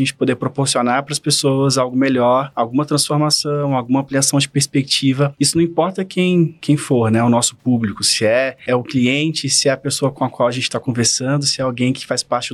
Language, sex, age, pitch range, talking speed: Portuguese, male, 20-39, 125-145 Hz, 220 wpm